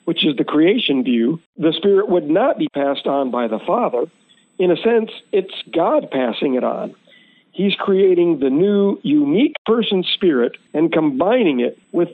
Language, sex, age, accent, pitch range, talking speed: English, male, 50-69, American, 150-205 Hz, 170 wpm